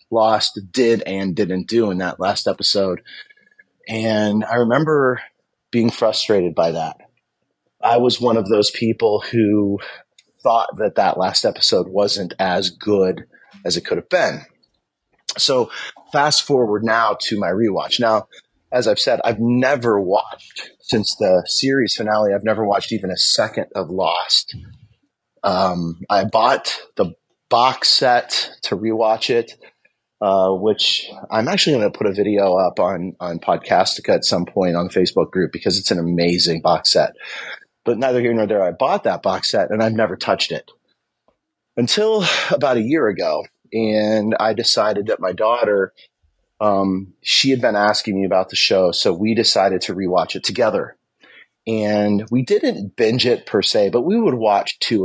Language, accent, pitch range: English, American, 100-120 Hz